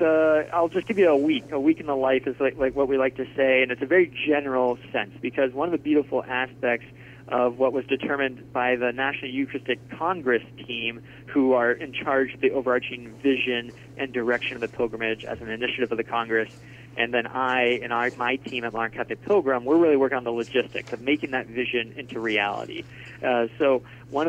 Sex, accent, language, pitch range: male, American, English, 120-135 Hz